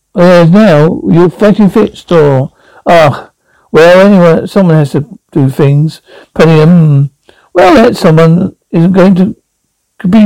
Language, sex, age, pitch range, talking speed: English, male, 60-79, 150-200 Hz, 140 wpm